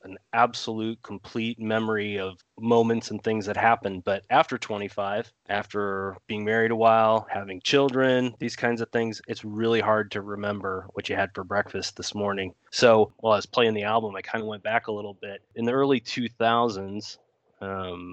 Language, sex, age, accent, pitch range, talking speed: English, male, 30-49, American, 100-115 Hz, 185 wpm